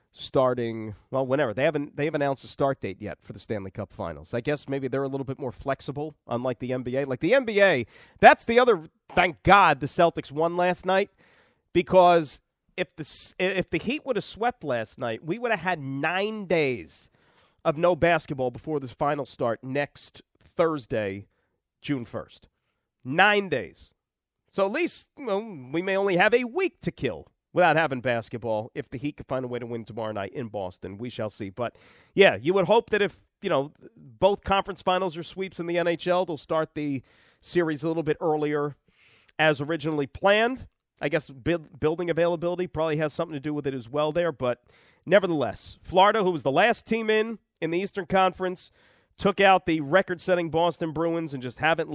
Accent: American